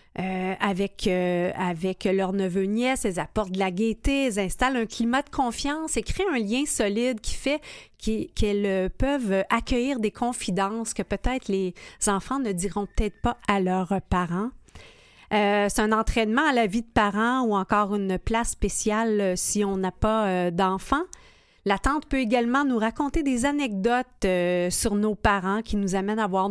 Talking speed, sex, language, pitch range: 175 wpm, female, French, 190-230 Hz